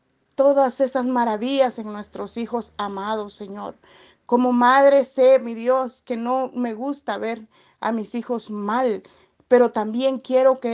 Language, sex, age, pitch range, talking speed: Spanish, female, 40-59, 230-270 Hz, 145 wpm